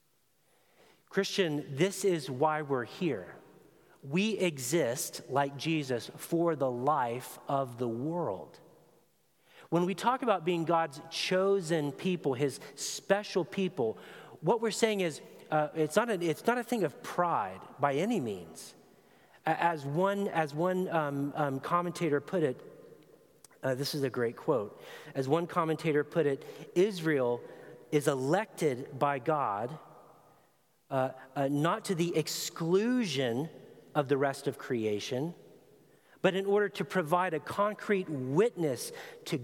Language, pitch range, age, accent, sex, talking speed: English, 140-190 Hz, 40-59, American, male, 130 wpm